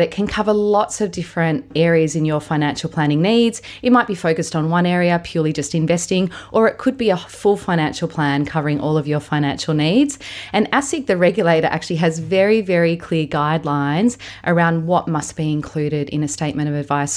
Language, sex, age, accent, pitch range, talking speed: English, female, 30-49, Australian, 150-175 Hz, 195 wpm